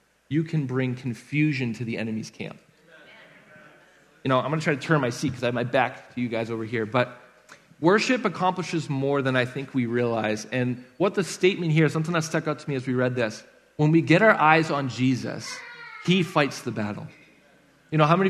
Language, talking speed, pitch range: English, 215 wpm, 130-170 Hz